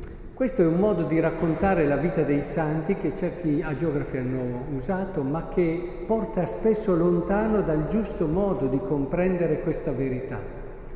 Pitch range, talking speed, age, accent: 140-185 Hz, 150 wpm, 50-69, native